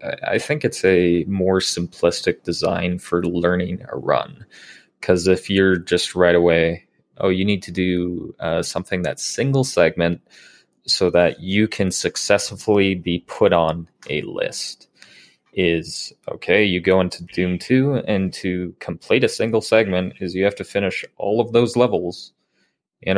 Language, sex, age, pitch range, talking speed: English, male, 20-39, 90-105 Hz, 155 wpm